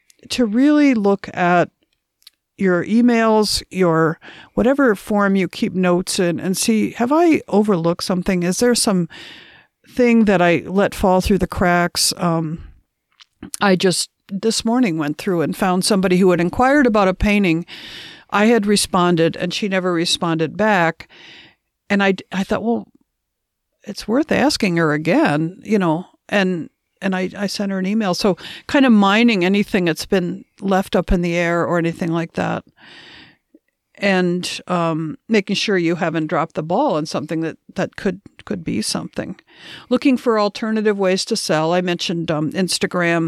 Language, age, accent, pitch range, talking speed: English, 50-69, American, 170-210 Hz, 160 wpm